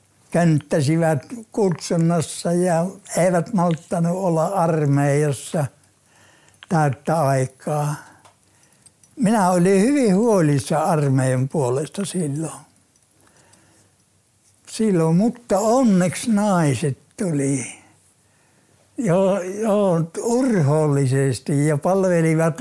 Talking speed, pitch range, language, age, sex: 70 wpm, 145-195 Hz, Finnish, 60-79, male